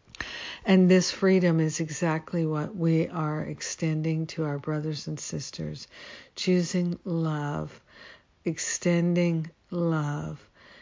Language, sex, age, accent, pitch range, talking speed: English, female, 60-79, American, 150-175 Hz, 100 wpm